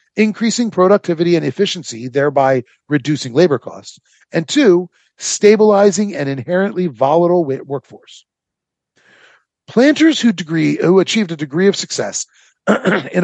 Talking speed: 115 wpm